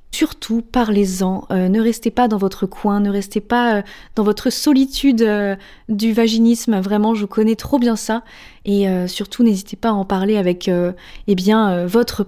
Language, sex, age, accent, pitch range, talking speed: French, female, 20-39, French, 190-235 Hz, 190 wpm